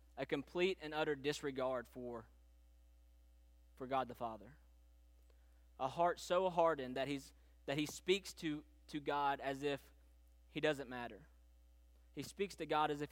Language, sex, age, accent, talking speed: English, male, 20-39, American, 150 wpm